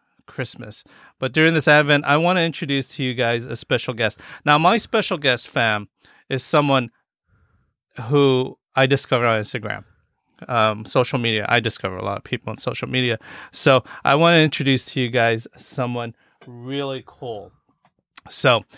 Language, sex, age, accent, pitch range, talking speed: English, male, 30-49, American, 120-150 Hz, 165 wpm